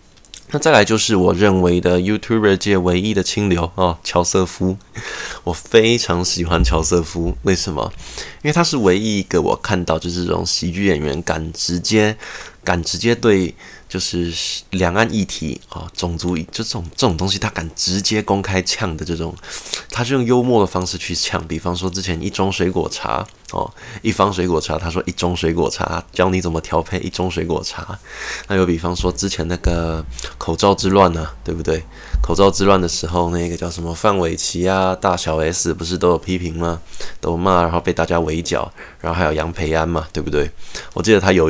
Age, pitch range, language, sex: 20-39, 80-95 Hz, Chinese, male